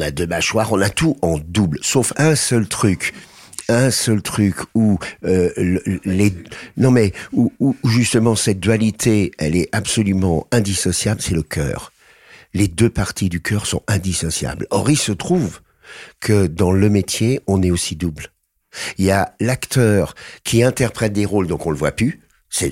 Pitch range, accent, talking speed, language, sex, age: 95-125 Hz, French, 175 wpm, French, male, 60-79